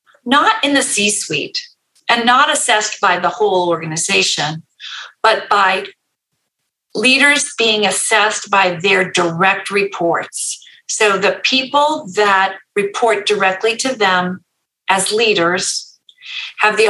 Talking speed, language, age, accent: 115 wpm, English, 40-59, American